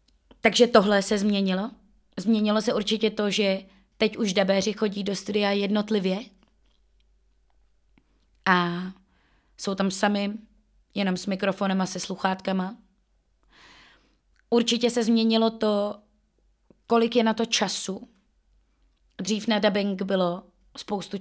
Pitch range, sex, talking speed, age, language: 195-230 Hz, female, 115 wpm, 20-39, Czech